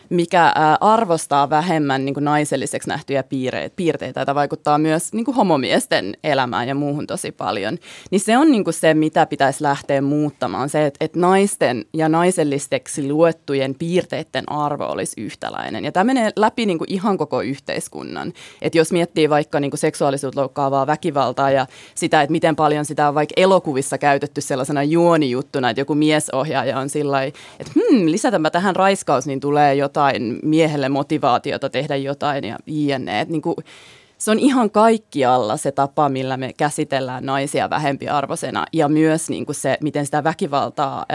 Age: 20-39